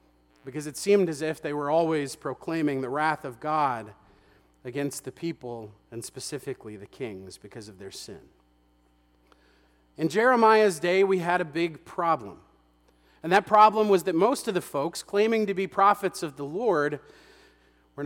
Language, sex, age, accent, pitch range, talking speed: English, male, 40-59, American, 125-180 Hz, 165 wpm